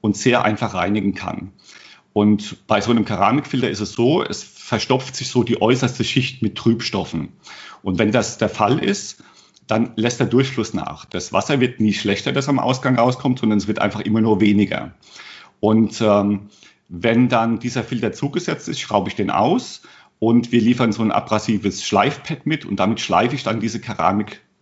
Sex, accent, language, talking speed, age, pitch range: male, German, German, 185 wpm, 40-59, 105-125 Hz